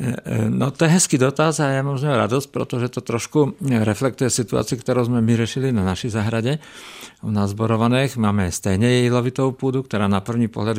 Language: Czech